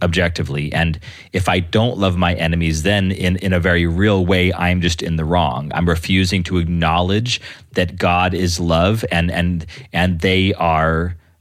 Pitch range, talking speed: 85-100 Hz, 175 wpm